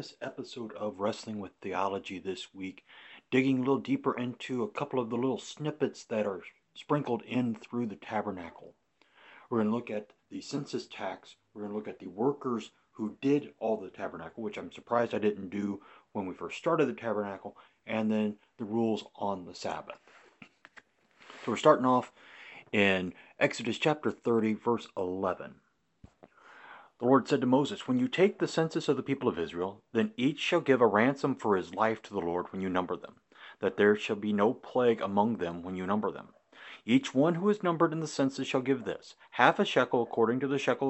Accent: American